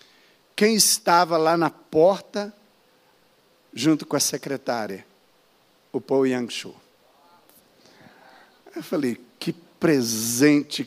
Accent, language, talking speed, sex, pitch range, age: Brazilian, Portuguese, 90 wpm, male, 125-175 Hz, 60-79